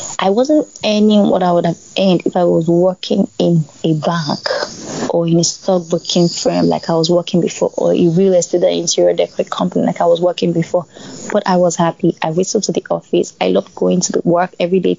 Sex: female